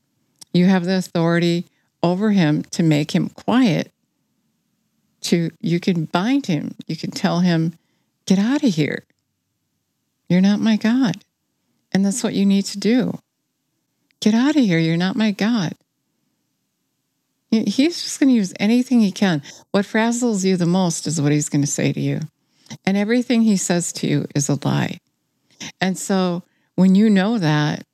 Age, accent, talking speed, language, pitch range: 60-79, American, 170 wpm, English, 155-205 Hz